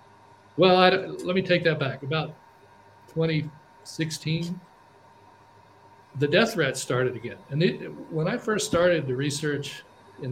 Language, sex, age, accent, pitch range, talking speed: English, male, 60-79, American, 125-155 Hz, 135 wpm